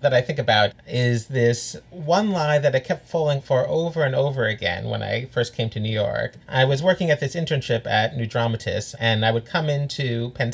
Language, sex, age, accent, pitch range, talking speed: English, male, 30-49, American, 120-165 Hz, 220 wpm